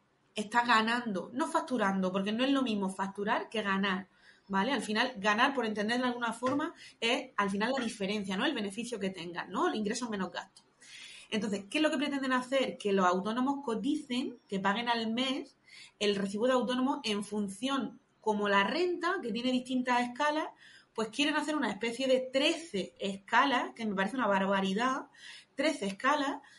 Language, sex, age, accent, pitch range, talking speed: Spanish, female, 30-49, Spanish, 195-265 Hz, 180 wpm